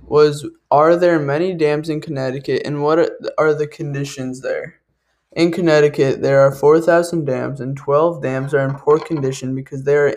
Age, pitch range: 20-39, 140-160 Hz